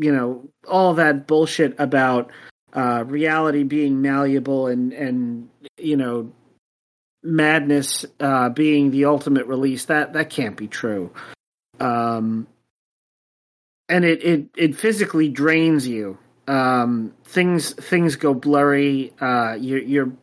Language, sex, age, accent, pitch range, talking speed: English, male, 30-49, American, 125-155 Hz, 120 wpm